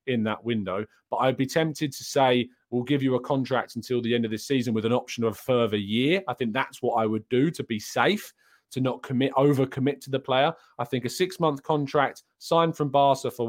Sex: male